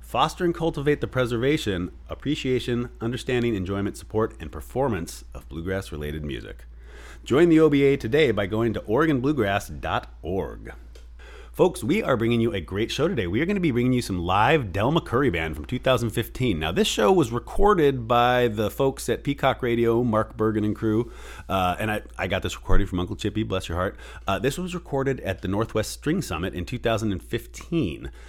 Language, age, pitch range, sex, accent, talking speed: English, 30-49, 90-120 Hz, male, American, 180 wpm